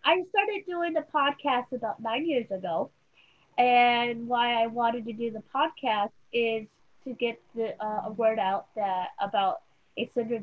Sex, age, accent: female, 20-39, American